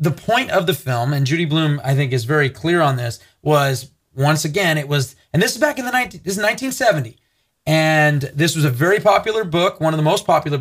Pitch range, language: 135-165 Hz, English